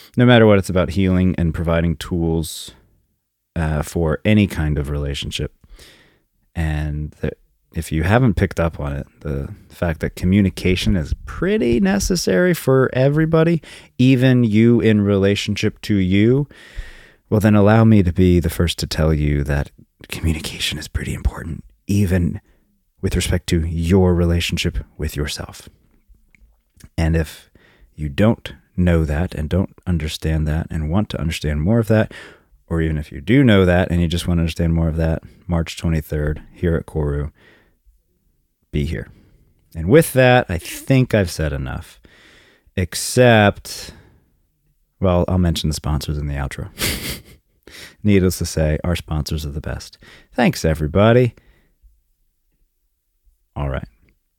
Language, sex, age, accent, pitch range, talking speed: English, male, 30-49, American, 75-105 Hz, 145 wpm